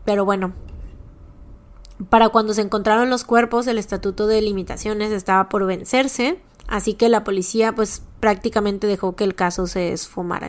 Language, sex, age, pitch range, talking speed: Spanish, female, 20-39, 190-220 Hz, 155 wpm